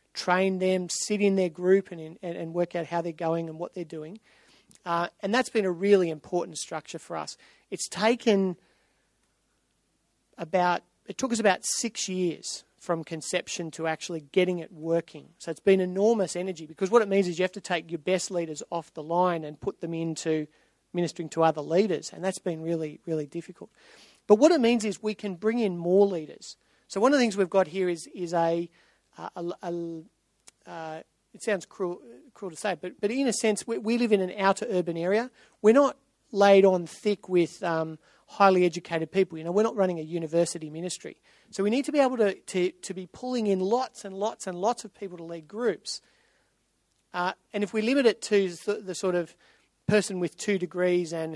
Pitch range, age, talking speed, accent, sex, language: 170-205 Hz, 40-59, 210 wpm, Australian, male, English